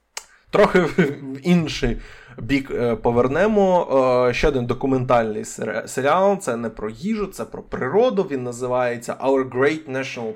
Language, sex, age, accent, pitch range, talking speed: Ukrainian, male, 20-39, native, 115-145 Hz, 120 wpm